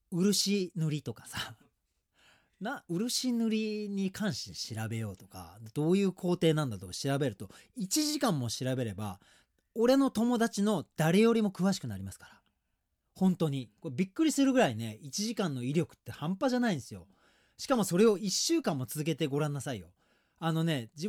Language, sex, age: Japanese, male, 40-59